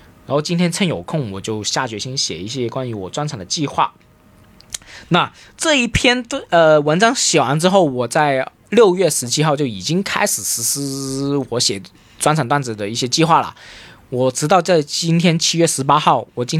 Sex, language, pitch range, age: male, Chinese, 115-165 Hz, 20-39